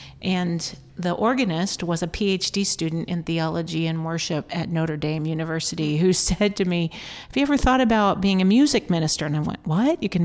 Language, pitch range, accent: English, 165-195 Hz, American